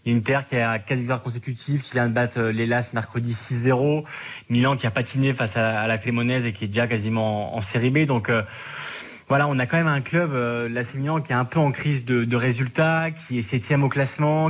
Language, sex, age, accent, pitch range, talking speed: French, male, 20-39, French, 115-140 Hz, 230 wpm